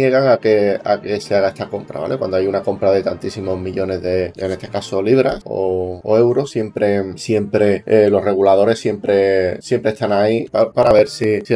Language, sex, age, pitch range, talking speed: Spanish, male, 20-39, 100-115 Hz, 210 wpm